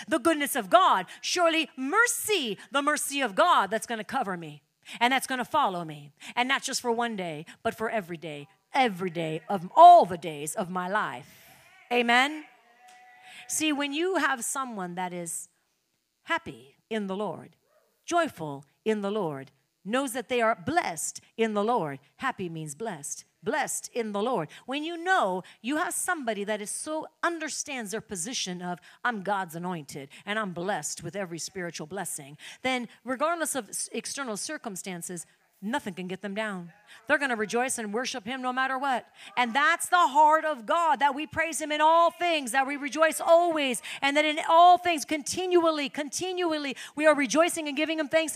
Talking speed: 180 wpm